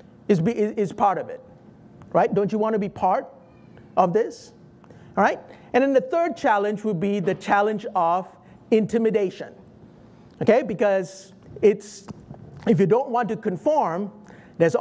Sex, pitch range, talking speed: male, 190-260 Hz, 155 wpm